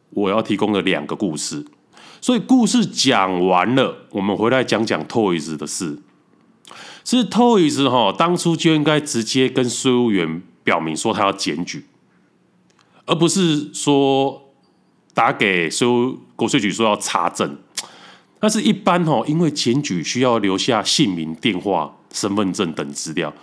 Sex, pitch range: male, 90-140 Hz